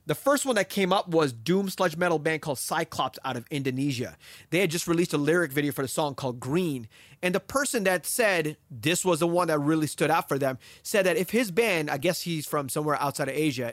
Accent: American